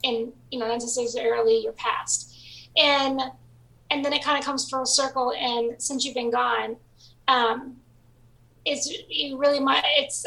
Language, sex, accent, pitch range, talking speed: English, female, American, 225-280 Hz, 150 wpm